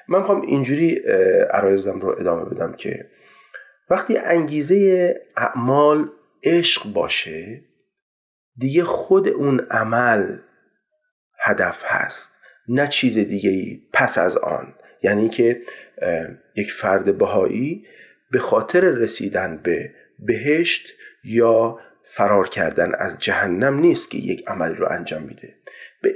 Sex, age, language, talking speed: male, 40-59, Persian, 110 wpm